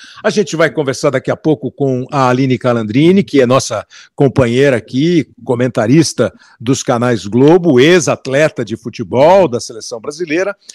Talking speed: 145 wpm